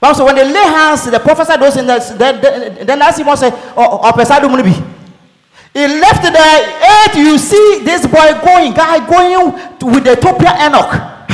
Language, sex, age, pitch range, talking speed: English, male, 40-59, 215-345 Hz, 150 wpm